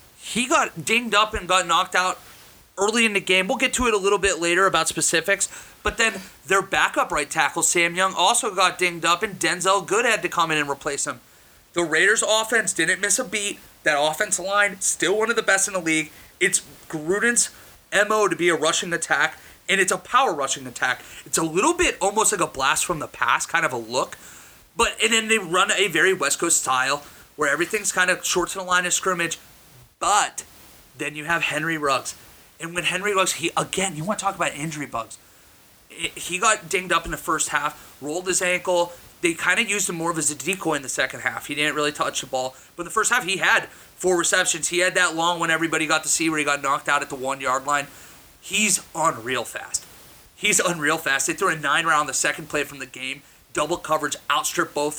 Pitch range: 150-195 Hz